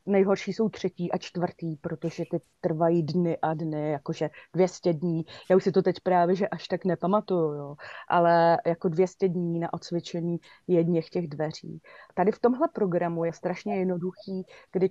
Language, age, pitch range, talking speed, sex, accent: Czech, 30-49, 165-185 Hz, 155 wpm, female, native